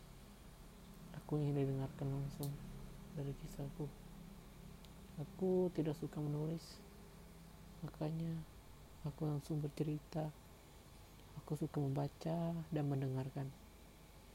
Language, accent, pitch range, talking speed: Indonesian, native, 115-155 Hz, 80 wpm